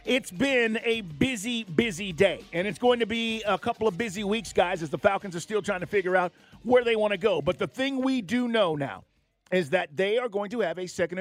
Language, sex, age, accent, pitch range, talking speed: English, male, 40-59, American, 145-205 Hz, 250 wpm